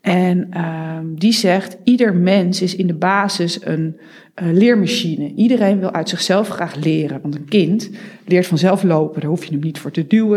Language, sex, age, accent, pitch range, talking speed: Dutch, female, 40-59, Dutch, 160-215 Hz, 190 wpm